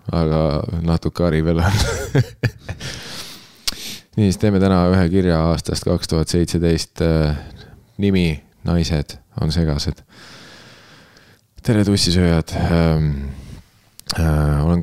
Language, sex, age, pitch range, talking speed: English, male, 20-39, 80-95 Hz, 85 wpm